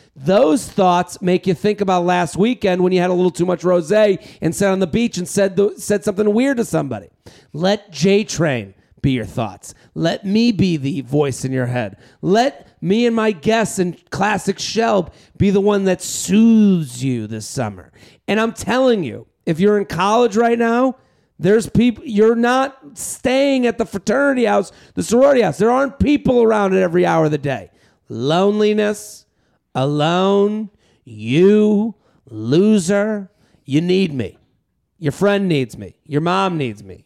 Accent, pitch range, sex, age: American, 140-205 Hz, male, 40-59